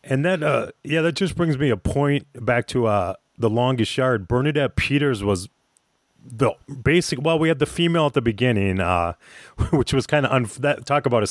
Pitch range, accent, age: 100-130 Hz, American, 30-49